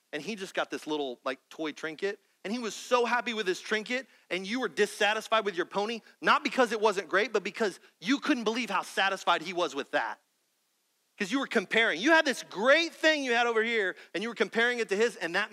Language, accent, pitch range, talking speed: English, American, 195-265 Hz, 240 wpm